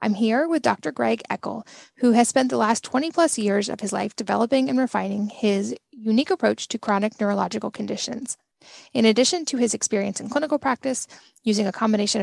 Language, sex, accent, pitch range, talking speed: English, female, American, 205-245 Hz, 185 wpm